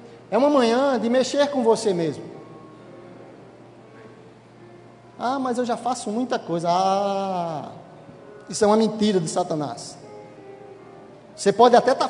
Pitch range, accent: 160-245 Hz, Brazilian